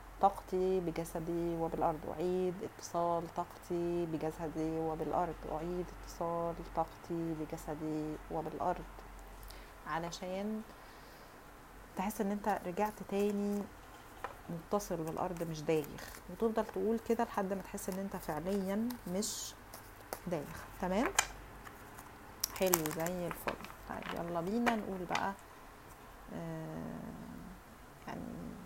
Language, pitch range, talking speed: Arabic, 165-195 Hz, 95 wpm